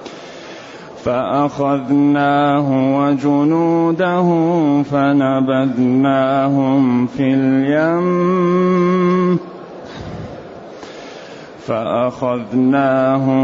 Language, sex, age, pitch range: Arabic, male, 30-49, 140-175 Hz